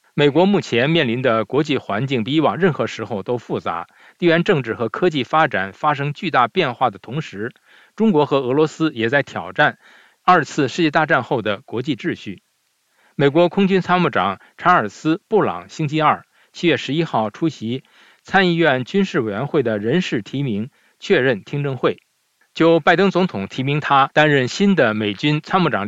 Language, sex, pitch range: Chinese, male, 125-175 Hz